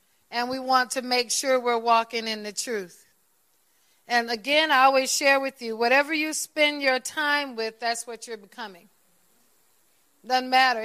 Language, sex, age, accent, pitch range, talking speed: English, female, 40-59, American, 225-275 Hz, 165 wpm